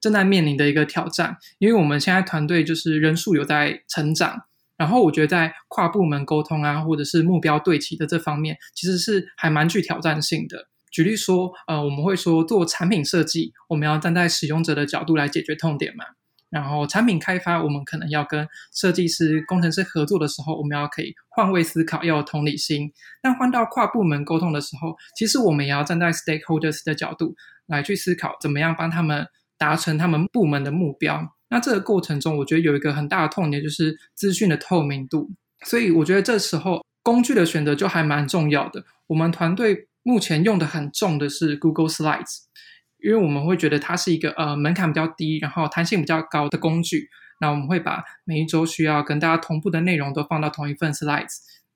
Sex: male